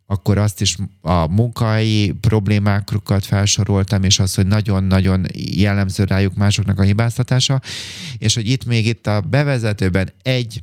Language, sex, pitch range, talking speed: Hungarian, male, 95-110 Hz, 135 wpm